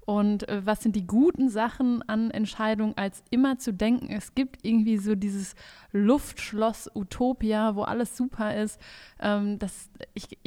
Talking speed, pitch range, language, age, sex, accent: 130 wpm, 200-230 Hz, German, 20-39, female, German